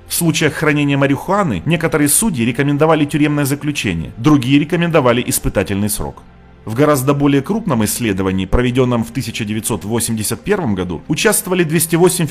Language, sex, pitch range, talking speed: Russian, male, 115-160 Hz, 115 wpm